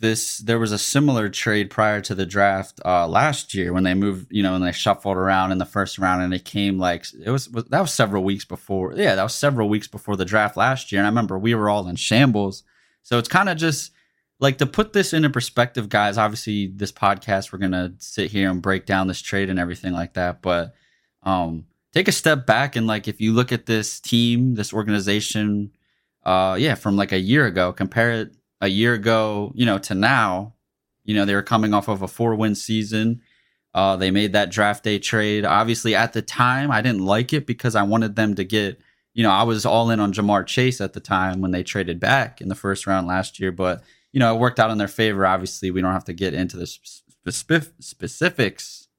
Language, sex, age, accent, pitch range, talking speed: English, male, 20-39, American, 95-115 Hz, 230 wpm